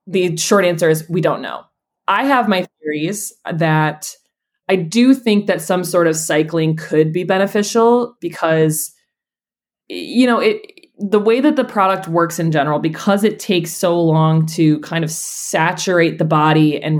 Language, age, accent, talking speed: English, 20-39, American, 165 wpm